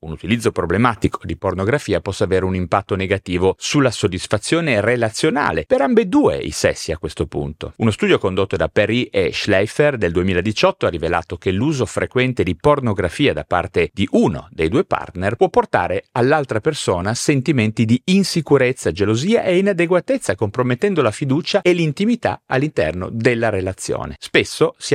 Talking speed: 150 wpm